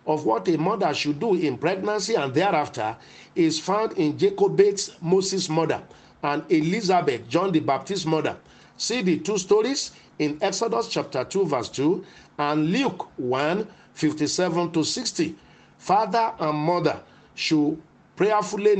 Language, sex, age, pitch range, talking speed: English, male, 50-69, 150-210 Hz, 135 wpm